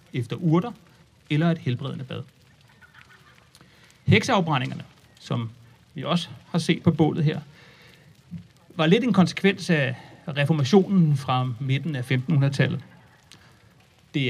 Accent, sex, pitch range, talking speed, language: native, male, 130-165 Hz, 110 wpm, Danish